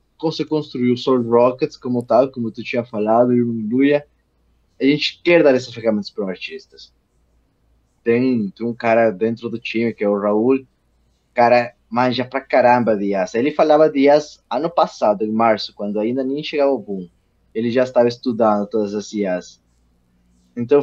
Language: Portuguese